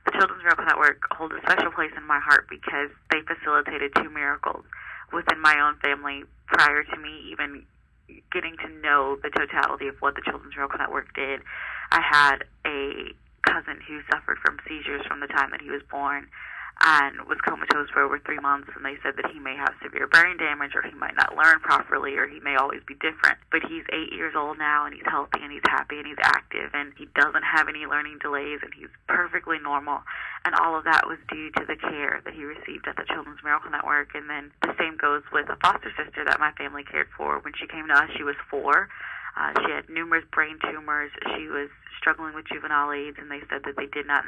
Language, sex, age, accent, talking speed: English, female, 20-39, American, 220 wpm